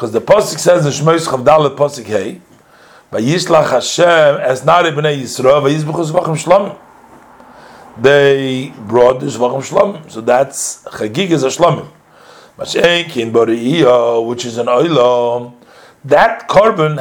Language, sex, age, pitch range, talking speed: English, male, 40-59, 115-155 Hz, 135 wpm